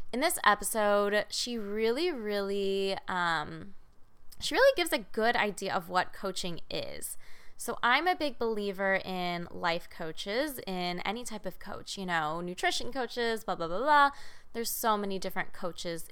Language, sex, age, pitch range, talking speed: English, female, 20-39, 180-220 Hz, 160 wpm